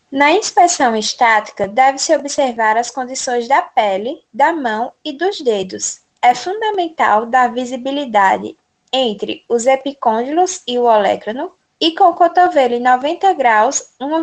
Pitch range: 235-325 Hz